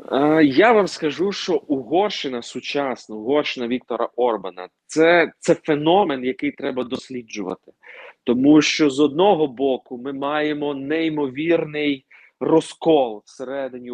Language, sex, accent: Ukrainian, male, native